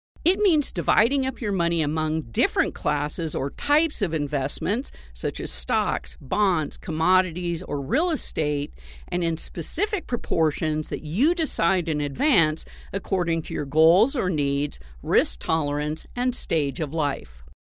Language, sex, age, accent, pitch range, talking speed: English, female, 50-69, American, 150-245 Hz, 145 wpm